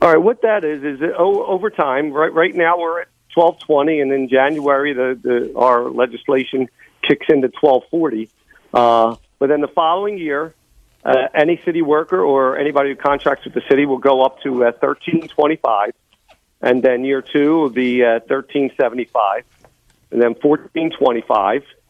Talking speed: 165 wpm